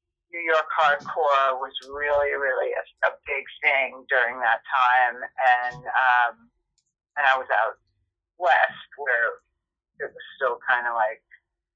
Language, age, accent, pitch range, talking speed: English, 40-59, American, 130-190 Hz, 140 wpm